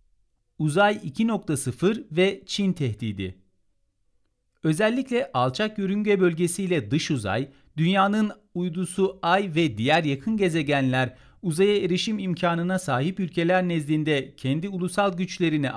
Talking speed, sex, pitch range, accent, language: 105 wpm, male, 135-185 Hz, native, Turkish